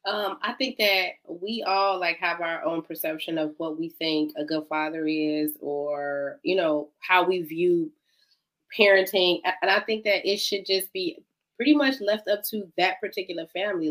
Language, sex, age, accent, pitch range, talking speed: English, female, 20-39, American, 175-225 Hz, 180 wpm